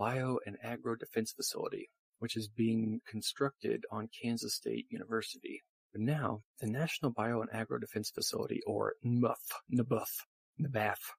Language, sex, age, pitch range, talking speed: English, male, 40-59, 110-130 Hz, 140 wpm